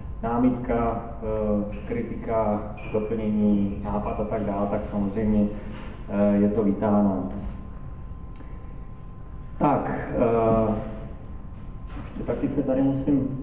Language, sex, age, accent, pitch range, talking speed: Czech, male, 30-49, native, 110-155 Hz, 80 wpm